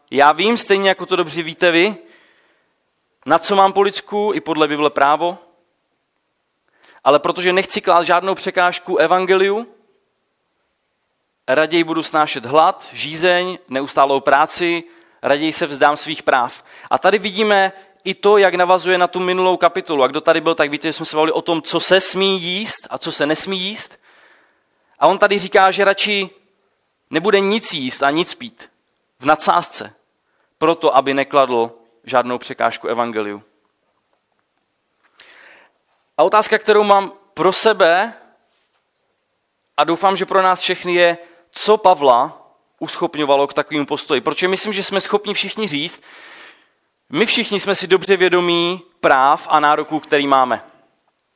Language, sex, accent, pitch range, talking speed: Czech, male, native, 155-195 Hz, 145 wpm